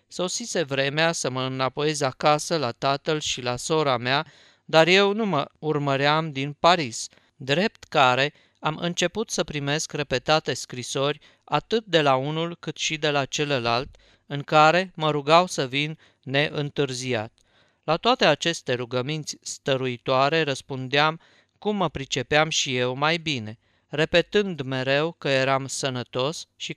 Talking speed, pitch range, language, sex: 140 wpm, 130-160 Hz, Romanian, male